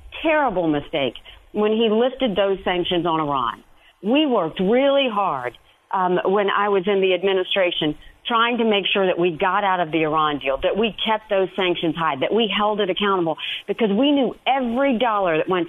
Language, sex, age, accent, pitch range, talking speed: English, female, 50-69, American, 180-230 Hz, 190 wpm